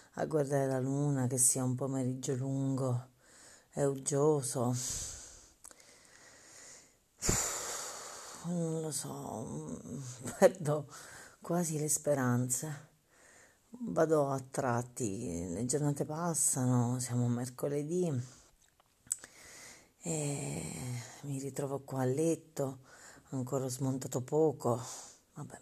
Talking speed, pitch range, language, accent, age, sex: 85 wpm, 130-150 Hz, Italian, native, 40-59, female